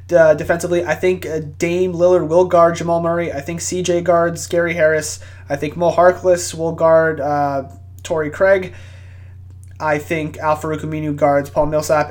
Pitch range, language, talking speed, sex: 140-175 Hz, English, 155 wpm, male